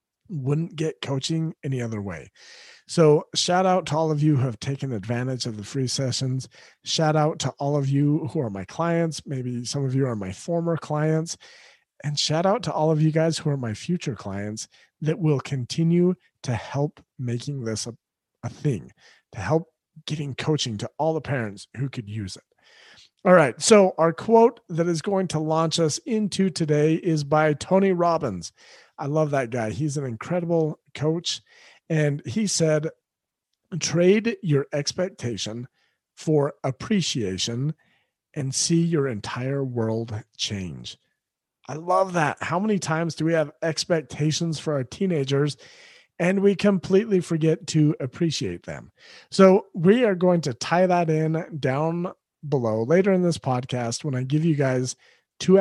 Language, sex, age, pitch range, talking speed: English, male, 40-59, 130-170 Hz, 165 wpm